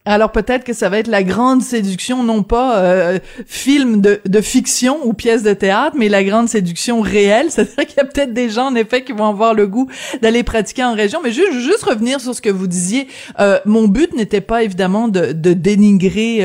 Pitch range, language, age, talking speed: 180-230 Hz, French, 30-49, 225 wpm